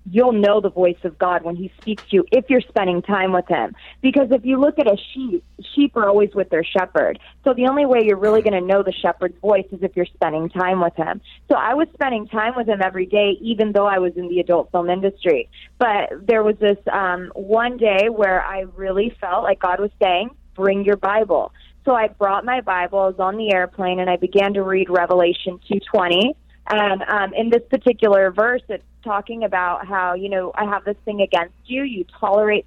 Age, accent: 20-39, American